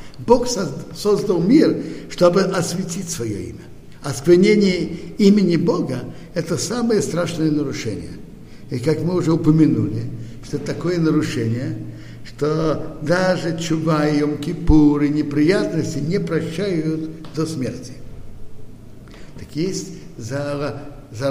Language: Russian